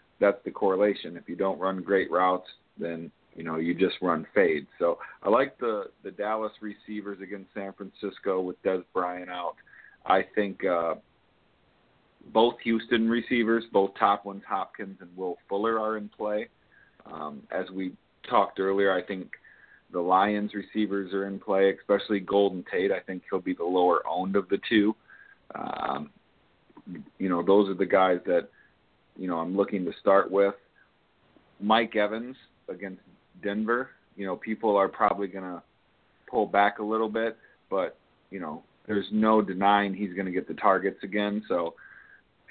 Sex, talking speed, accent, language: male, 165 wpm, American, English